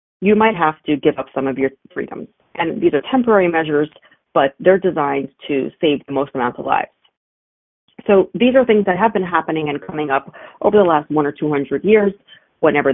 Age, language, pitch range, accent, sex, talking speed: 40-59, English, 145-205 Hz, American, female, 205 wpm